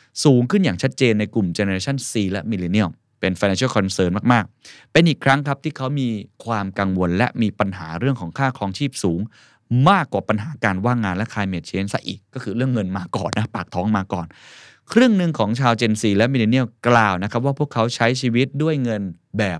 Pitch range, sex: 100-130 Hz, male